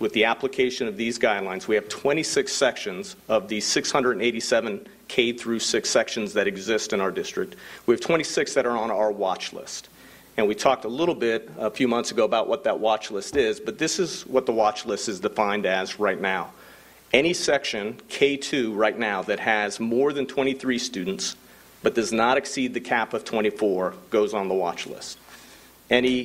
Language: English